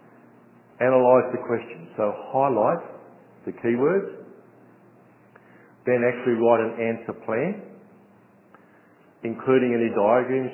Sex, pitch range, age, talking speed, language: male, 105-130 Hz, 50-69, 90 wpm, English